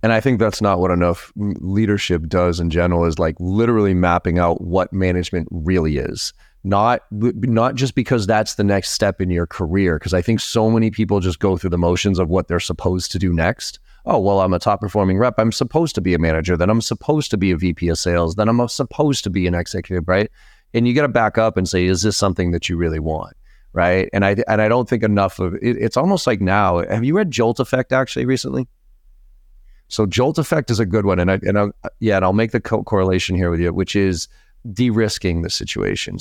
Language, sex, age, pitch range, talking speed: English, male, 30-49, 90-110 Hz, 230 wpm